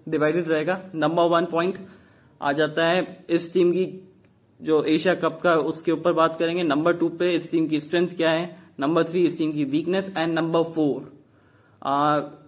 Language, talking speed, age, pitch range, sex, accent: English, 155 wpm, 20-39, 150-175 Hz, male, Indian